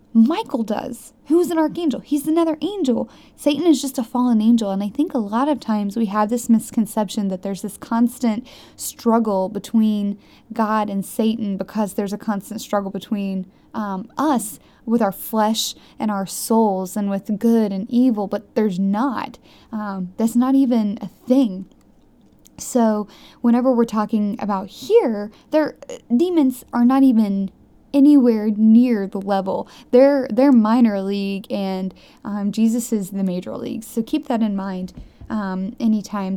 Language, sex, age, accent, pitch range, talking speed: English, female, 10-29, American, 205-255 Hz, 155 wpm